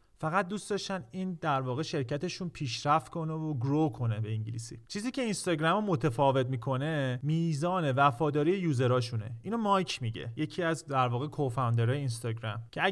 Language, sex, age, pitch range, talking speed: Persian, male, 40-59, 130-165 Hz, 145 wpm